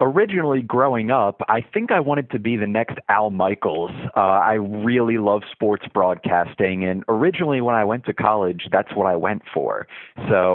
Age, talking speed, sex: 30-49, 180 wpm, male